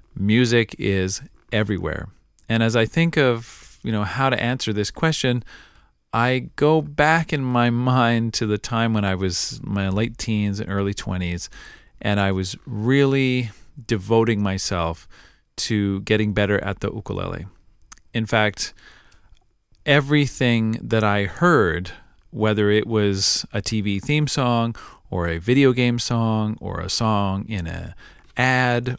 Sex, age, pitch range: male, 40-59, 100-125 Hz